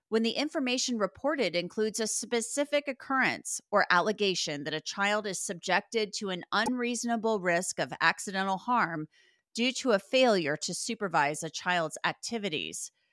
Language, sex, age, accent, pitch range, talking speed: English, female, 30-49, American, 185-245 Hz, 140 wpm